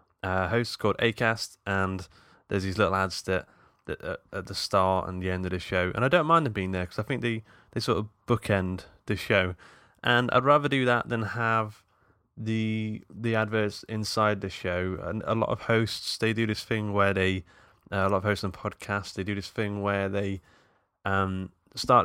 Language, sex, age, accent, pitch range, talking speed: English, male, 20-39, British, 95-110 Hz, 210 wpm